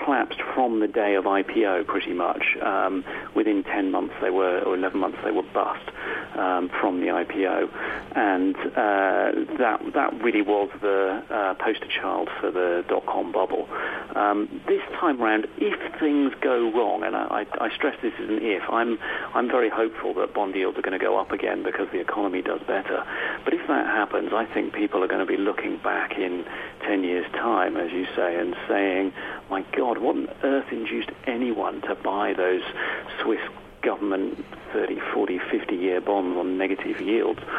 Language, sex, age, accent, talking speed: English, male, 40-59, British, 180 wpm